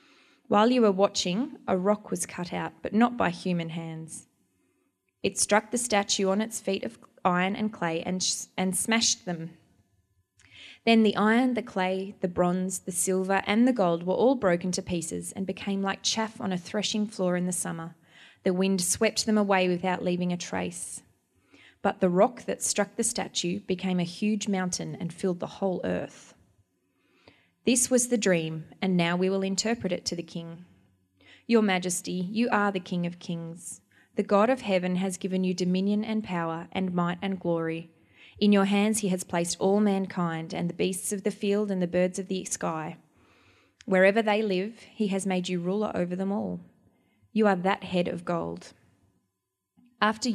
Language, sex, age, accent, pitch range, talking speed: English, female, 20-39, Australian, 170-205 Hz, 185 wpm